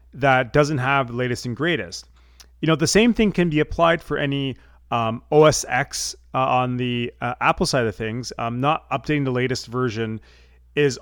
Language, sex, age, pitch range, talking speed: English, male, 30-49, 120-145 Hz, 185 wpm